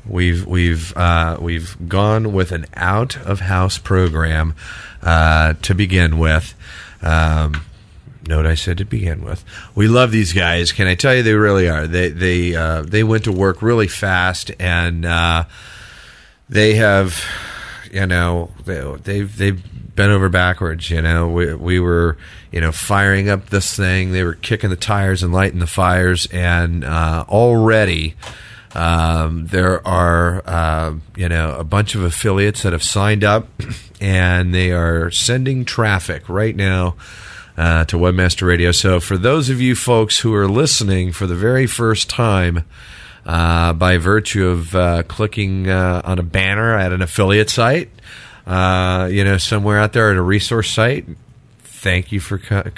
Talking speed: 165 wpm